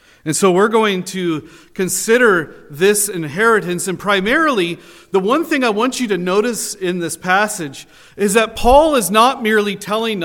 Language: English